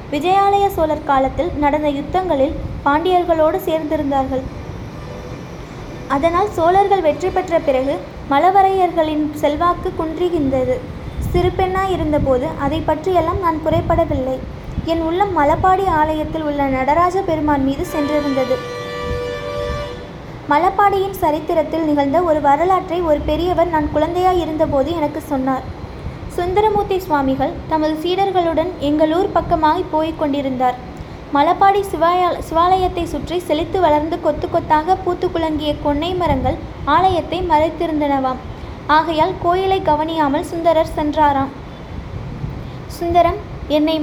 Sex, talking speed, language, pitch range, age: female, 95 wpm, Tamil, 295-355 Hz, 20-39